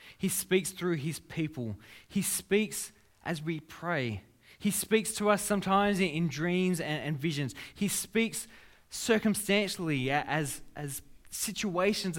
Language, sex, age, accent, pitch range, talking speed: English, male, 20-39, Australian, 105-165 Hz, 130 wpm